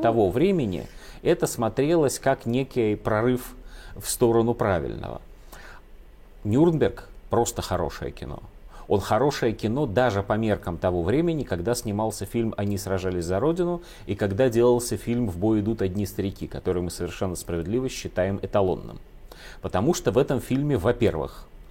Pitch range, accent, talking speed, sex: 90-120 Hz, native, 140 wpm, male